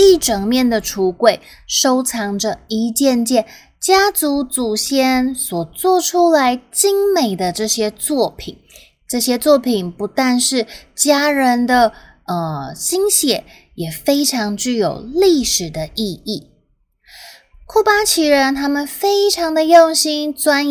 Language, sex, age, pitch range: Chinese, female, 20-39, 195-280 Hz